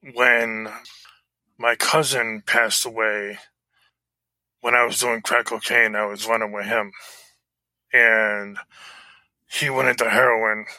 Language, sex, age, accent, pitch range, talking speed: English, male, 20-39, American, 110-120 Hz, 115 wpm